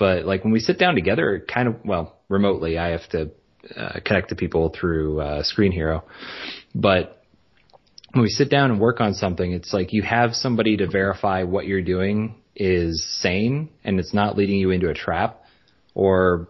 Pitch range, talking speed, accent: 90-105 Hz, 190 wpm, American